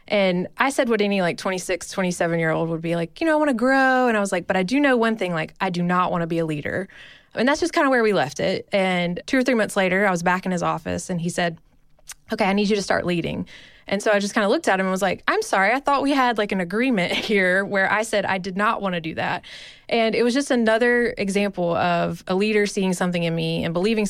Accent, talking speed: American, 285 wpm